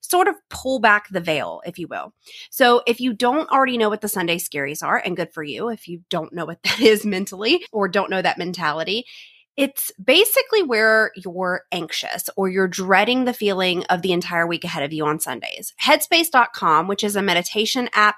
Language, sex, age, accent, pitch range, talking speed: English, female, 30-49, American, 175-240 Hz, 205 wpm